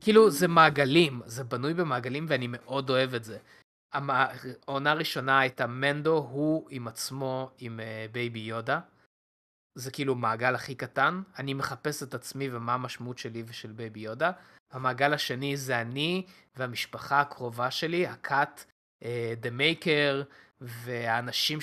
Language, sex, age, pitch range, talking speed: Hebrew, male, 20-39, 125-155 Hz, 135 wpm